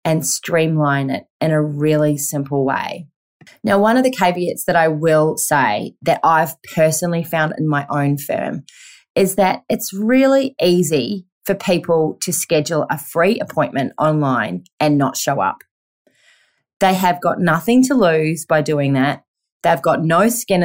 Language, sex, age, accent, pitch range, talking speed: English, female, 30-49, Australian, 150-185 Hz, 160 wpm